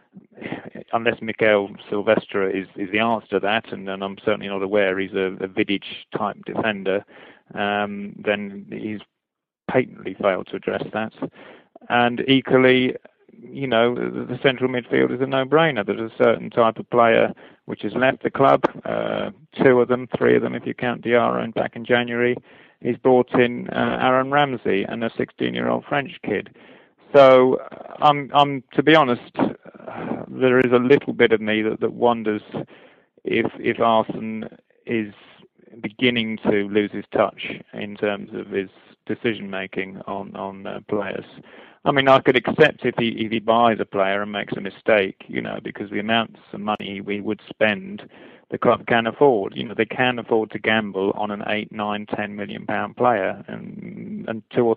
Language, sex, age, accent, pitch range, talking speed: English, male, 40-59, British, 100-125 Hz, 175 wpm